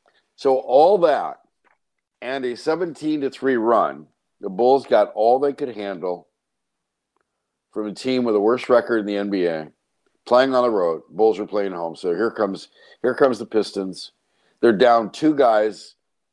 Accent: American